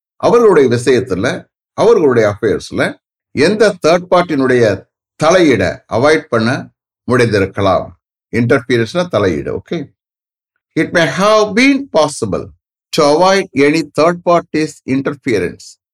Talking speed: 80 wpm